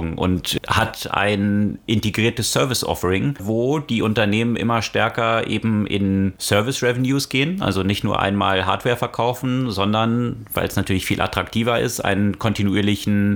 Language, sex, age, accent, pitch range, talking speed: German, male, 30-49, German, 95-115 Hz, 130 wpm